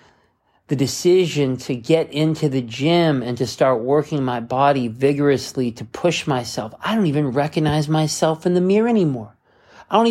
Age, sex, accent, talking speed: 40-59, male, American, 165 wpm